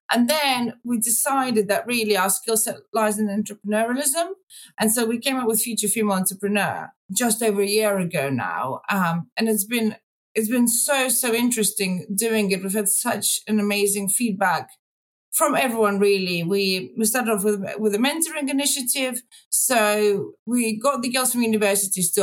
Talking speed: 175 wpm